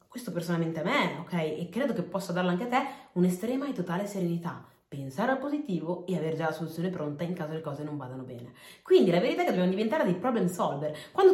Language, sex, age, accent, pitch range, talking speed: Italian, female, 30-49, native, 170-230 Hz, 235 wpm